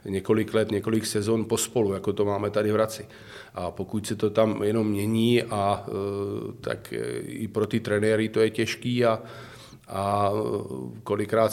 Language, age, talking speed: Czech, 40-59, 155 wpm